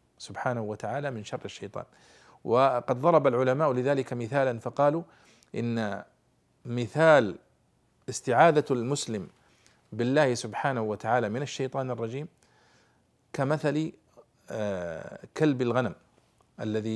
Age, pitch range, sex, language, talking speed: 50-69, 115-145 Hz, male, Arabic, 90 wpm